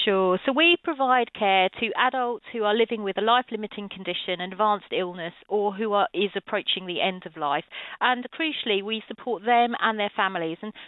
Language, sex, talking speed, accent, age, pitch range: English, female, 180 wpm, British, 40-59, 180-230 Hz